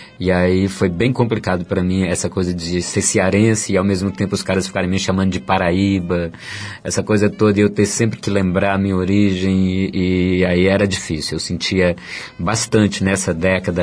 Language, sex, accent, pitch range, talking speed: Portuguese, male, Brazilian, 95-110 Hz, 195 wpm